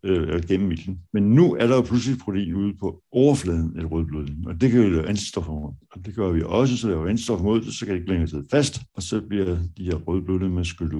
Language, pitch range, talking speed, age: Danish, 85-110 Hz, 250 wpm, 60-79